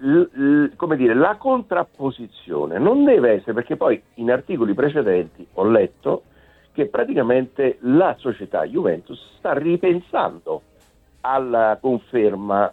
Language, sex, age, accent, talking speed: Italian, male, 60-79, native, 120 wpm